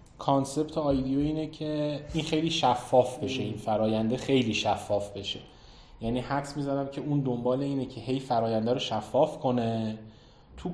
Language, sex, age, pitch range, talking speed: Persian, male, 30-49, 105-140 Hz, 150 wpm